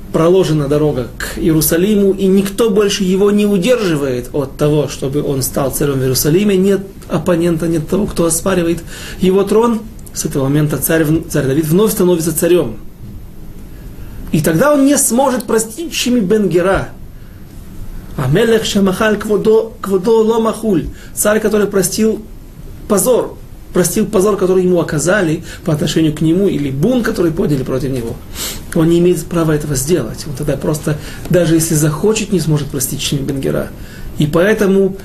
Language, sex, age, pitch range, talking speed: Russian, male, 30-49, 150-200 Hz, 145 wpm